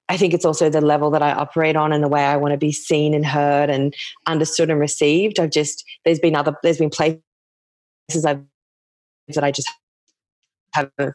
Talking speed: 195 wpm